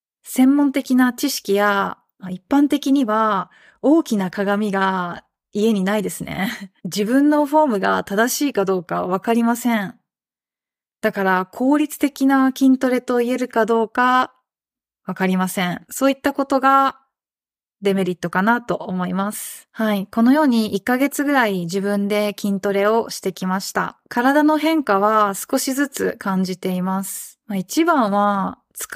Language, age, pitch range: Japanese, 20-39, 195-260 Hz